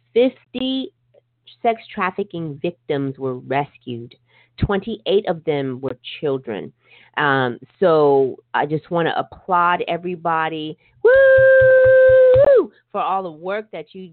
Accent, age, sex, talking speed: American, 30-49, female, 115 wpm